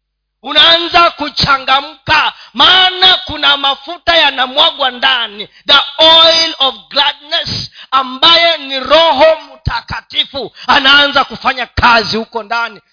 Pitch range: 165-270 Hz